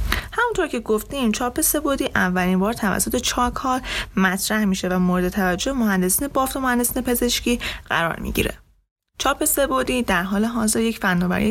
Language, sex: Persian, female